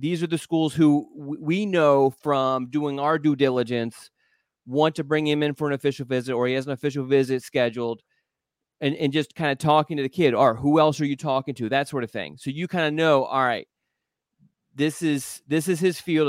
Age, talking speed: 30-49, 225 wpm